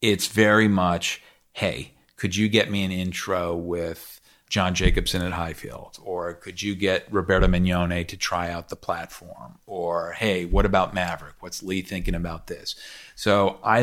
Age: 40-59